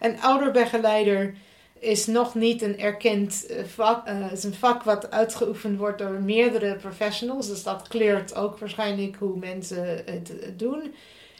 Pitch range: 190-215 Hz